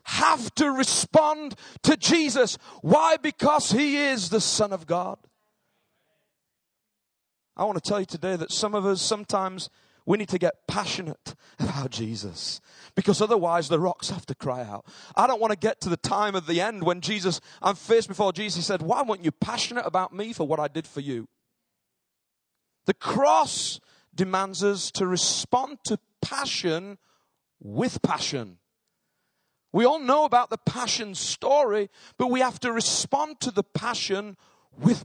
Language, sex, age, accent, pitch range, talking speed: English, male, 30-49, British, 140-220 Hz, 165 wpm